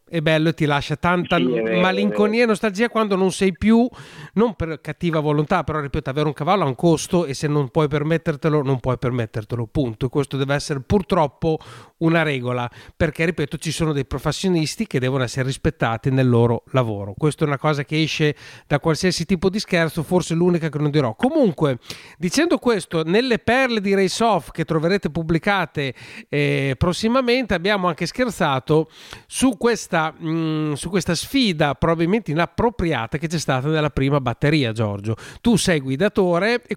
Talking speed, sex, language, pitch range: 170 wpm, male, Italian, 140-195 Hz